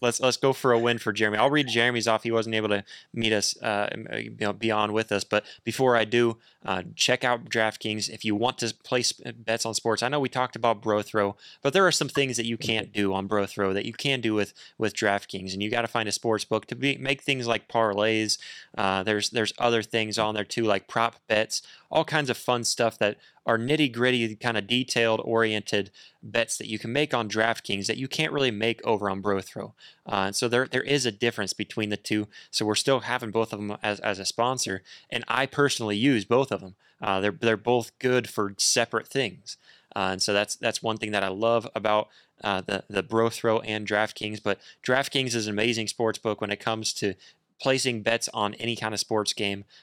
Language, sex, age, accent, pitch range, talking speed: English, male, 20-39, American, 105-120 Hz, 230 wpm